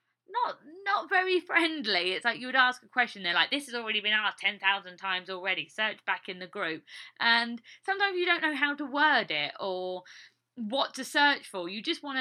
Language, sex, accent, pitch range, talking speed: English, female, British, 185-290 Hz, 215 wpm